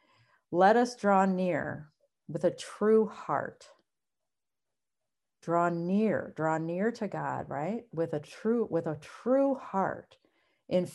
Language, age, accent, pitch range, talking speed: English, 50-69, American, 165-215 Hz, 125 wpm